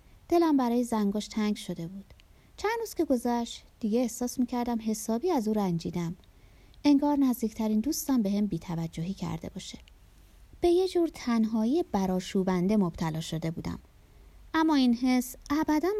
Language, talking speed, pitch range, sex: Persian, 140 wpm, 175-255 Hz, female